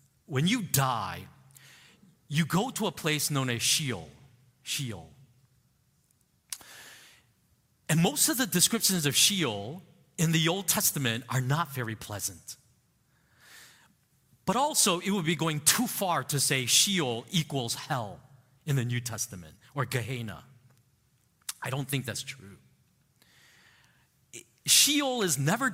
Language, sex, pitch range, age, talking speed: English, male, 130-170 Hz, 40-59, 125 wpm